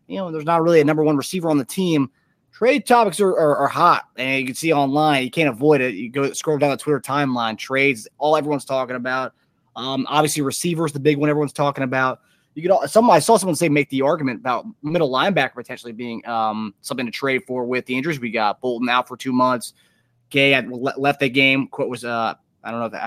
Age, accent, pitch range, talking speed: 20-39, American, 125-150 Hz, 230 wpm